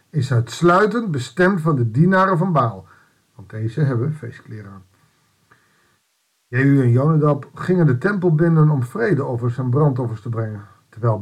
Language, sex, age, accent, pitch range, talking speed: Dutch, male, 50-69, Dutch, 140-205 Hz, 145 wpm